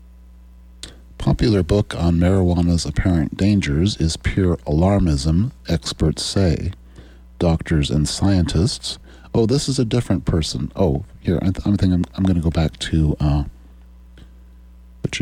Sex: male